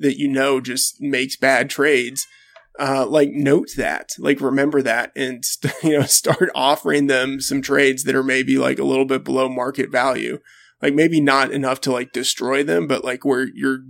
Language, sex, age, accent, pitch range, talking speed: English, male, 20-39, American, 130-145 Hz, 190 wpm